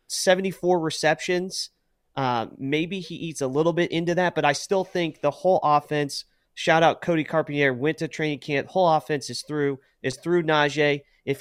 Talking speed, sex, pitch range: 180 wpm, male, 130-165 Hz